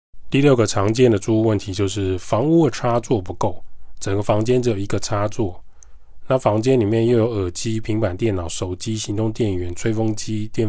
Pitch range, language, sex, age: 95-120 Hz, Chinese, male, 20-39